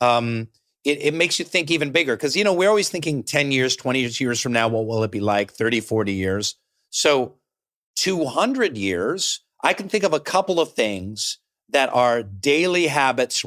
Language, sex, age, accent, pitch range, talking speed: English, male, 40-59, American, 125-160 Hz, 190 wpm